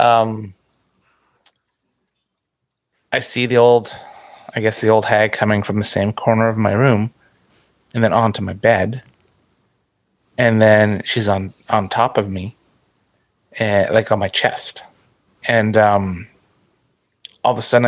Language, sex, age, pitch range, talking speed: English, male, 30-49, 100-115 Hz, 140 wpm